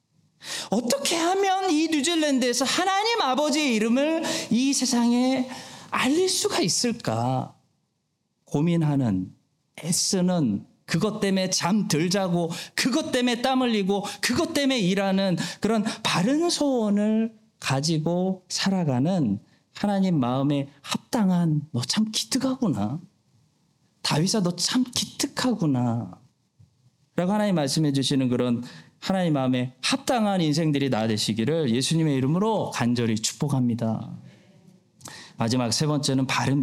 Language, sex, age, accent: Korean, male, 40-59, native